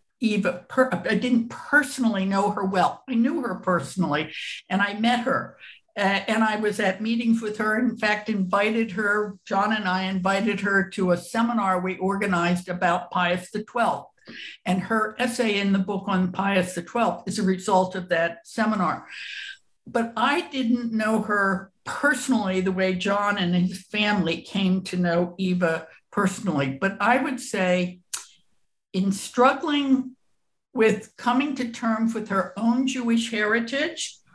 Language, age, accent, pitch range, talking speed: English, 60-79, American, 190-230 Hz, 155 wpm